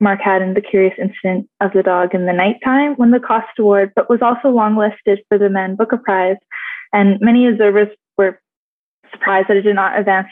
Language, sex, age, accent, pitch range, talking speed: English, female, 20-39, American, 190-215 Hz, 215 wpm